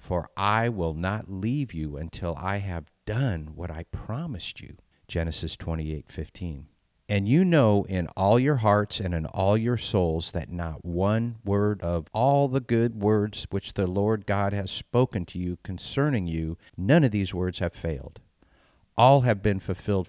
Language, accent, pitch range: English, American, 85-110 Hz